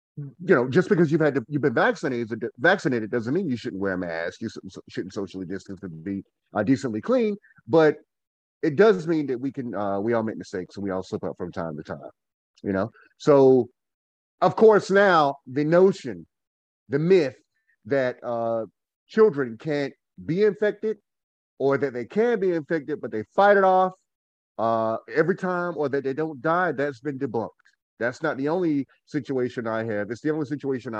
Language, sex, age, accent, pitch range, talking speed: English, male, 30-49, American, 110-160 Hz, 190 wpm